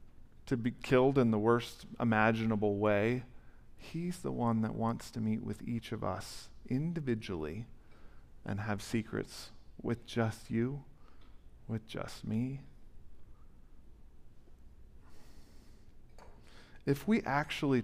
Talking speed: 110 wpm